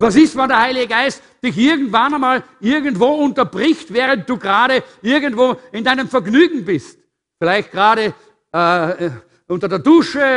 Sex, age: male, 60-79